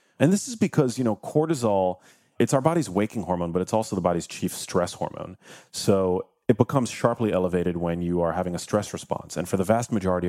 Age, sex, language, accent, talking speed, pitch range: 30-49, male, English, American, 215 wpm, 85-105 Hz